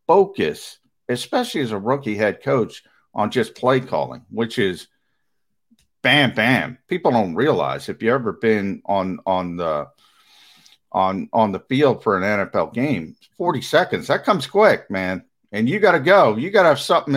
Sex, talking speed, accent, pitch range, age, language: male, 170 wpm, American, 105-170 Hz, 50-69, English